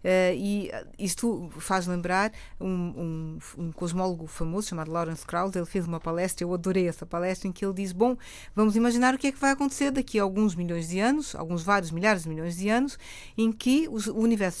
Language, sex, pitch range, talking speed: Portuguese, female, 180-245 Hz, 215 wpm